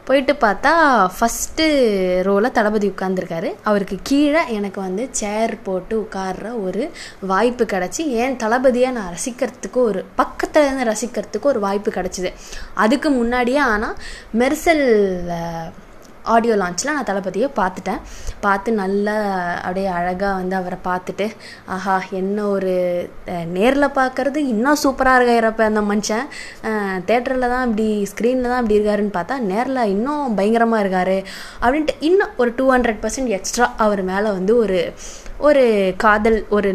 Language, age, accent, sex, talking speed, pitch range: Tamil, 20-39, native, female, 130 wpm, 195-250 Hz